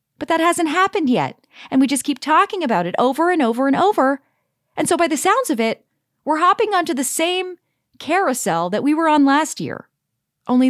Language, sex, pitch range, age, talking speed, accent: English, female, 215-300 Hz, 30-49, 205 wpm, American